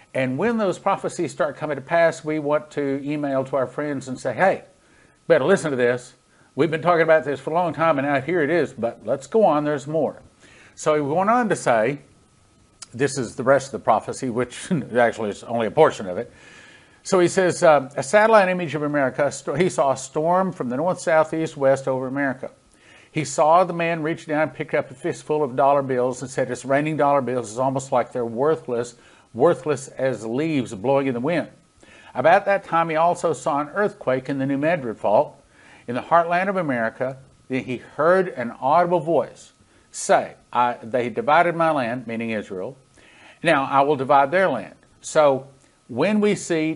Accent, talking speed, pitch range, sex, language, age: American, 200 wpm, 130-160 Hz, male, English, 50-69